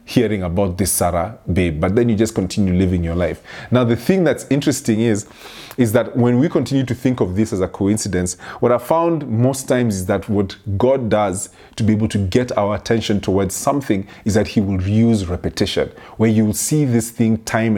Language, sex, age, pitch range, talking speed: English, male, 30-49, 95-120 Hz, 215 wpm